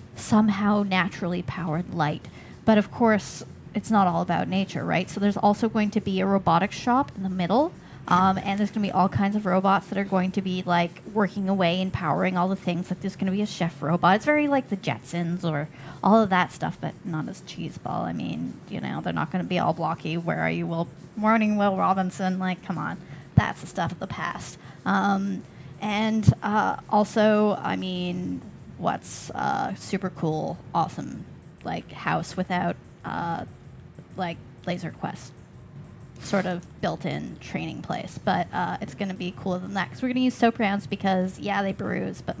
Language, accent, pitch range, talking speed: English, American, 175-210 Hz, 200 wpm